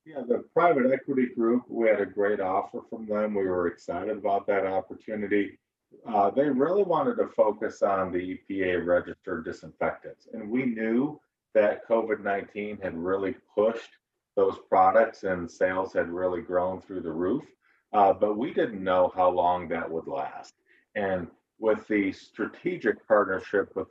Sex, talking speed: male, 160 wpm